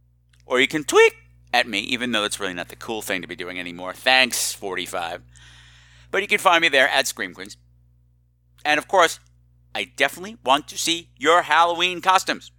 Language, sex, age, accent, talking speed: English, male, 50-69, American, 190 wpm